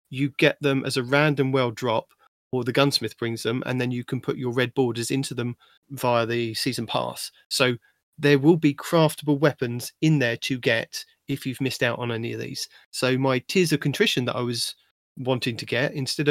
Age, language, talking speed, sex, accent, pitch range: 30-49, English, 210 wpm, male, British, 125-150 Hz